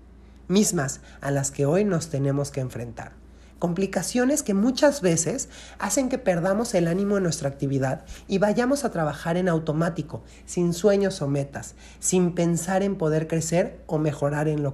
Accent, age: Mexican, 40-59